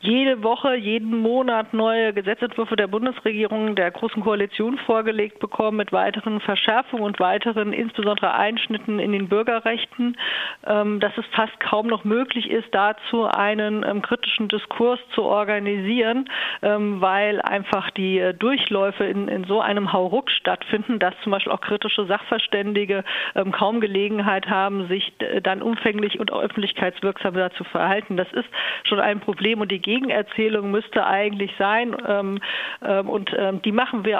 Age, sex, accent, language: 40-59, female, German, German